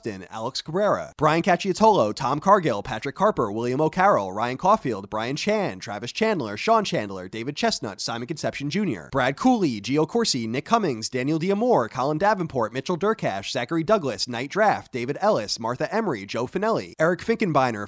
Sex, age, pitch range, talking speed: male, 30-49, 125-200 Hz, 160 wpm